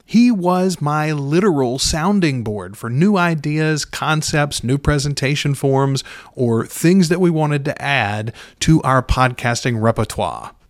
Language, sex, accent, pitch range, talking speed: English, male, American, 130-180 Hz, 135 wpm